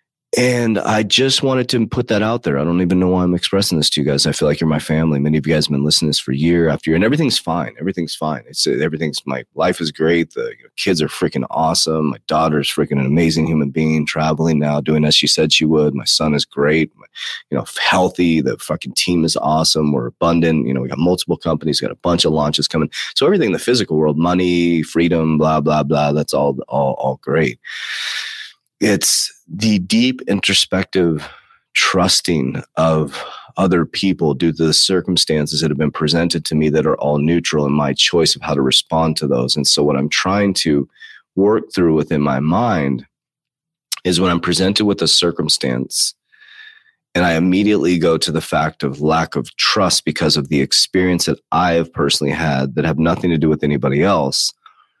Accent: American